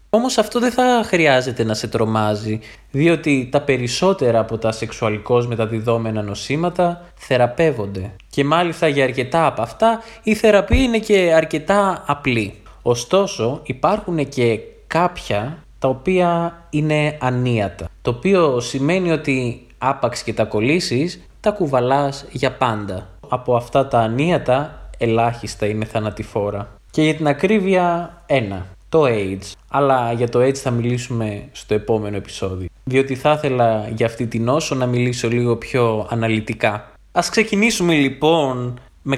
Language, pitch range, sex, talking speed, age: Greek, 115-155 Hz, male, 135 wpm, 20-39